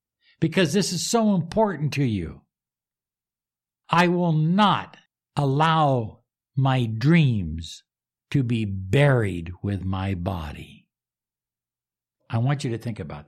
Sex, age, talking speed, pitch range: male, 60-79, 115 wpm, 105-155 Hz